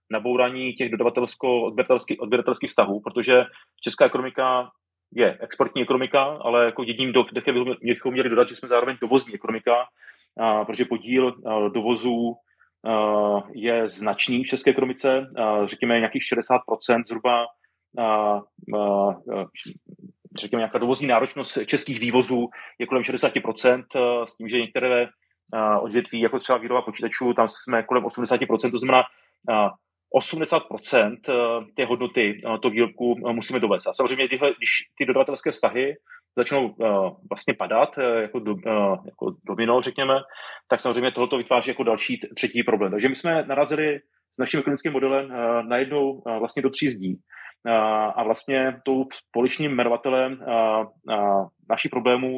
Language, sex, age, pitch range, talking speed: Czech, male, 30-49, 115-130 Hz, 130 wpm